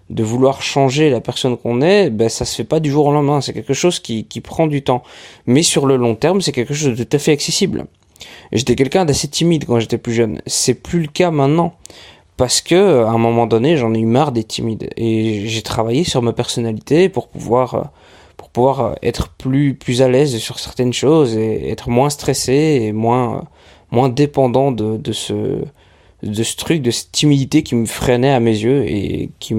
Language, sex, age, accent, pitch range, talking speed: French, male, 20-39, French, 115-140 Hz, 215 wpm